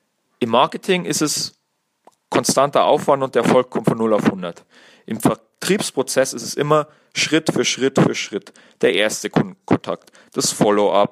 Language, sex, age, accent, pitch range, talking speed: German, male, 40-59, German, 120-150 Hz, 155 wpm